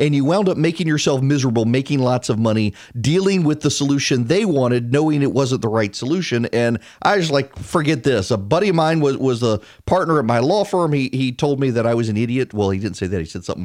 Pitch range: 120-160 Hz